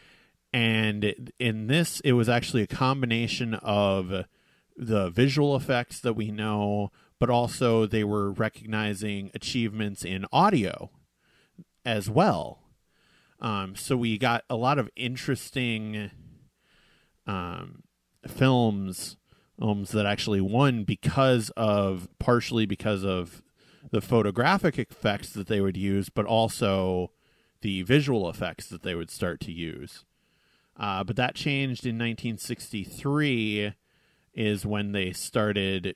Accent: American